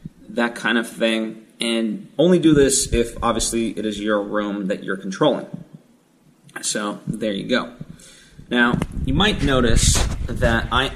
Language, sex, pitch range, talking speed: English, male, 110-160 Hz, 150 wpm